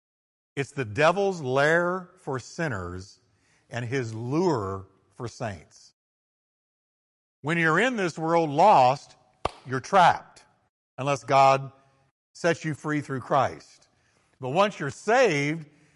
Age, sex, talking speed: 60-79, male, 115 wpm